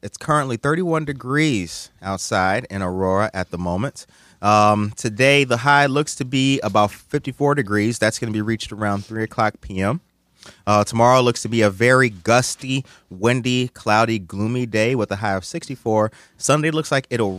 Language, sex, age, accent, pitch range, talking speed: English, male, 30-49, American, 100-120 Hz, 175 wpm